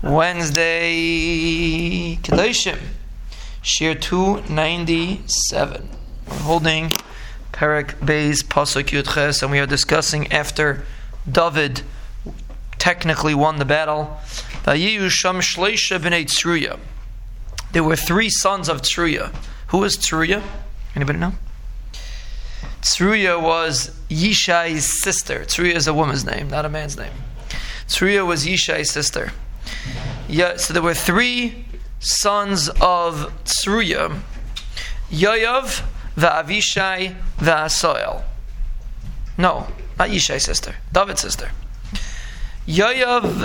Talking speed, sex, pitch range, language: 95 wpm, male, 145-185 Hz, English